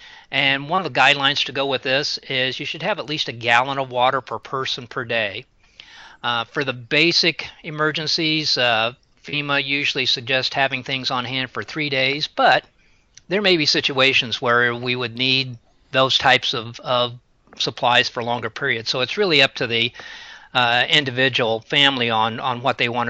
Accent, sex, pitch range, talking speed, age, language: American, male, 125-150 Hz, 180 wpm, 40-59, English